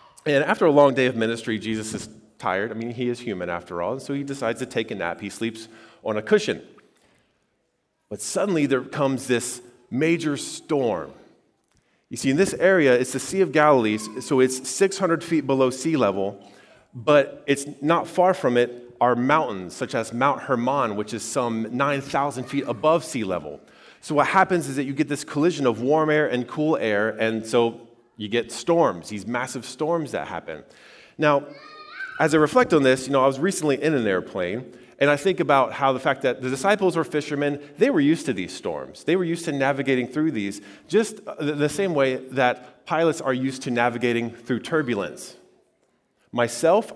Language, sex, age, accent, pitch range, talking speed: English, male, 30-49, American, 120-155 Hz, 195 wpm